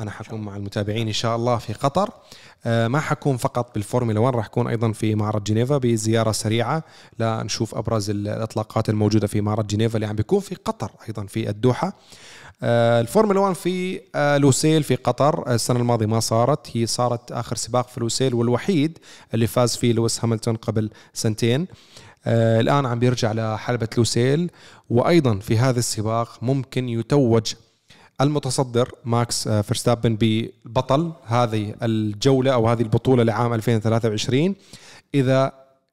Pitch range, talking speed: 110-130 Hz, 140 wpm